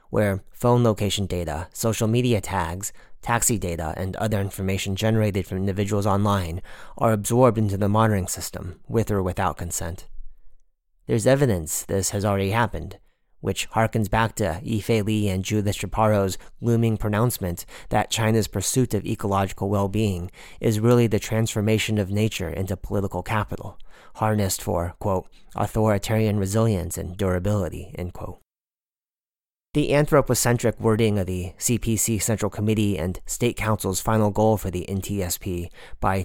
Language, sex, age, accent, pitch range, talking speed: English, male, 30-49, American, 95-115 Hz, 140 wpm